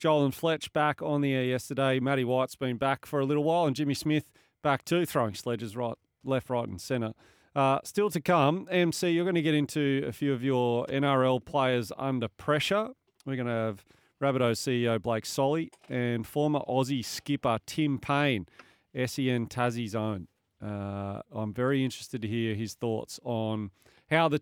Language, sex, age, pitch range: English, male, 30-49, 115-145 Hz